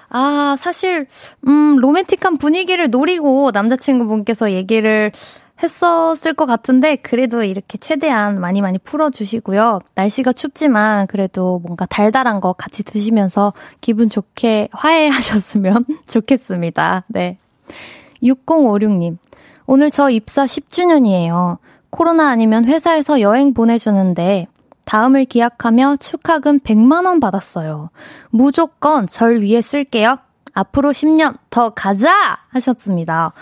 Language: Korean